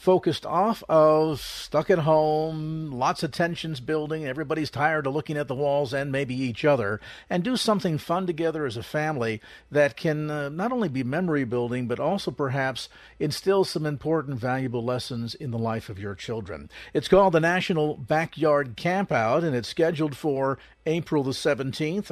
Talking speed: 175 wpm